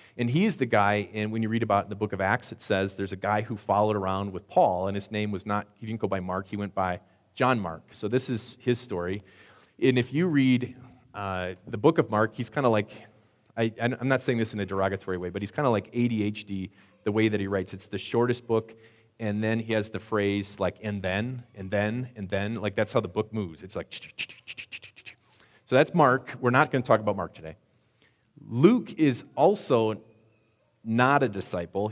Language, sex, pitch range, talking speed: English, male, 100-120 Hz, 220 wpm